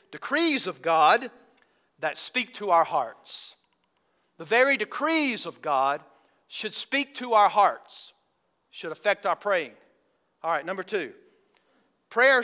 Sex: male